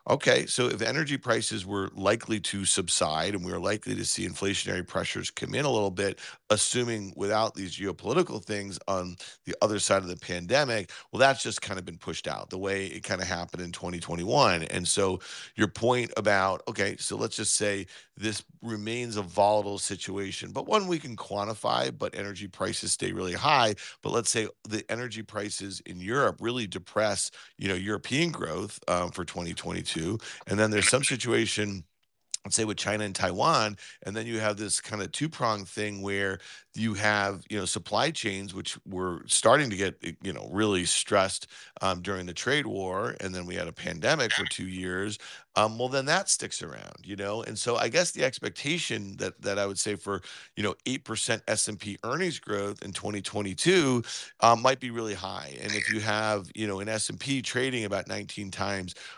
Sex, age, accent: male, 40-59, American